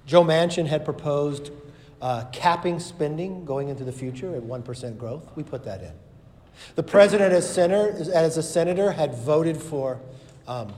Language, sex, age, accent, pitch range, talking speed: English, male, 50-69, American, 120-160 Hz, 165 wpm